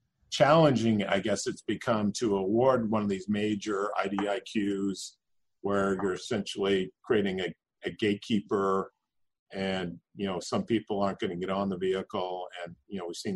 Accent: American